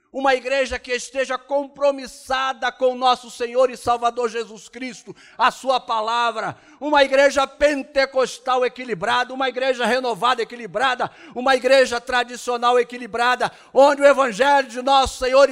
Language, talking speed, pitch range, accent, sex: Portuguese, 130 wpm, 240-285 Hz, Brazilian, male